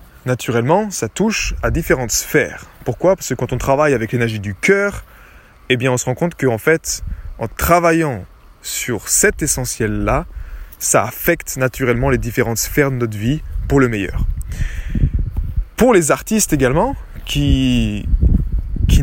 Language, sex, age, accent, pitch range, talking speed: French, male, 20-39, French, 105-140 Hz, 150 wpm